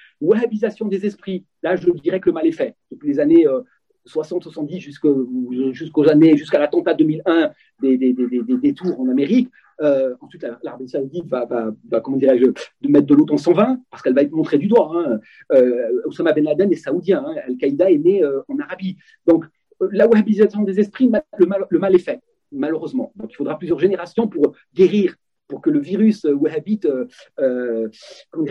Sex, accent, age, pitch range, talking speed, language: male, French, 40-59, 150-240 Hz, 180 wpm, French